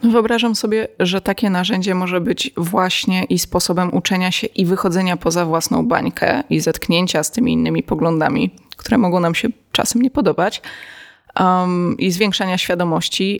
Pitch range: 170-195 Hz